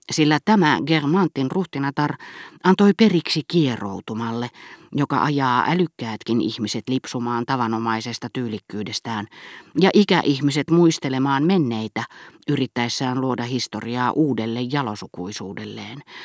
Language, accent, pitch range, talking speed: Finnish, native, 120-185 Hz, 85 wpm